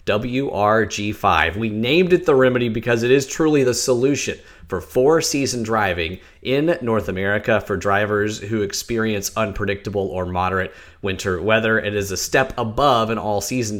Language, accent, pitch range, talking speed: English, American, 95-125 Hz, 150 wpm